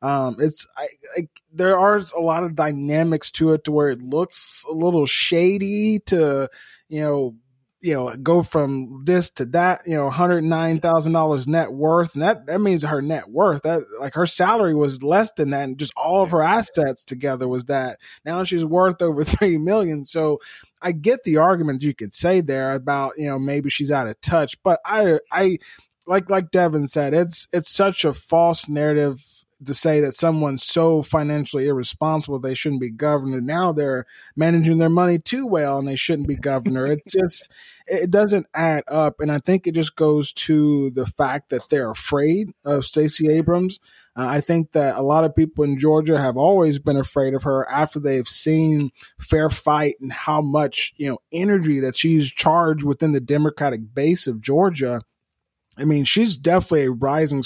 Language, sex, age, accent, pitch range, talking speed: English, male, 20-39, American, 140-170 Hz, 190 wpm